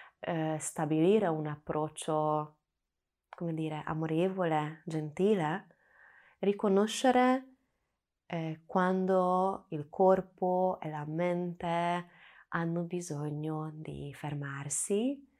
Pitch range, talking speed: 150-185 Hz, 75 wpm